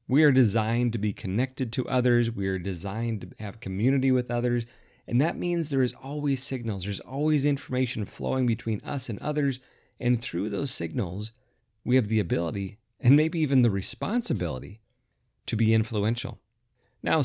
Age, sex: 30-49, male